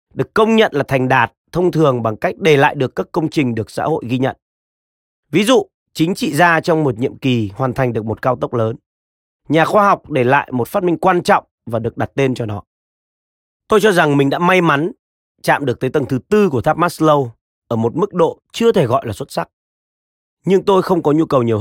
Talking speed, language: 240 wpm, Vietnamese